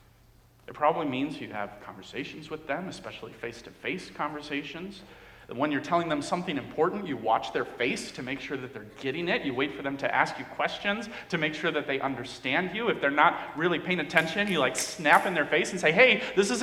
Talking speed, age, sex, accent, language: 215 wpm, 40-59, male, American, English